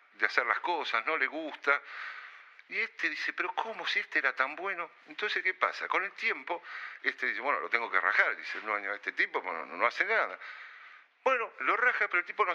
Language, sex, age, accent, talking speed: Spanish, male, 50-69, Argentinian, 225 wpm